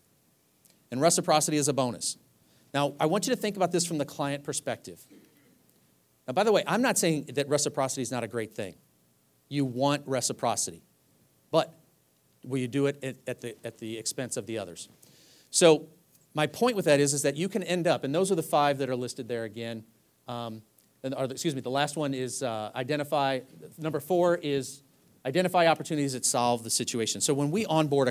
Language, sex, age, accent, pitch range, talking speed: English, male, 40-59, American, 125-160 Hz, 200 wpm